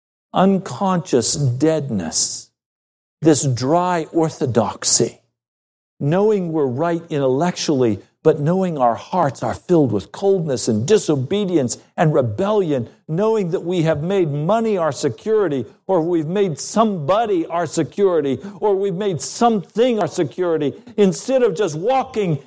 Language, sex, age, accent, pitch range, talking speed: English, male, 60-79, American, 120-195 Hz, 120 wpm